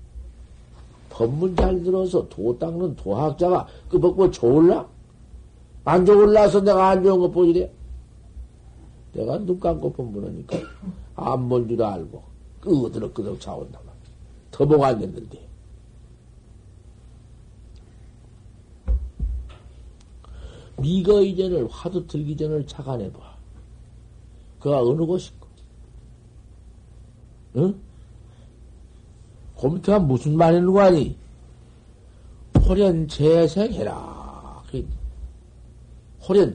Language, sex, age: Korean, male, 60-79